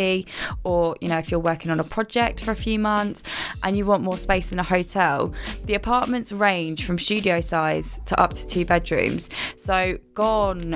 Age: 20-39